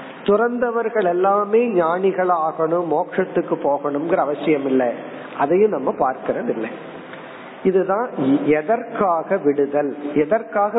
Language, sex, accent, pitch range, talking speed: Tamil, male, native, 150-210 Hz, 70 wpm